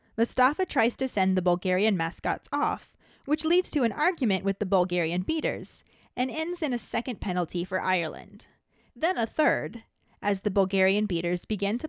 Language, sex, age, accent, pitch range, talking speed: English, female, 20-39, American, 185-245 Hz, 170 wpm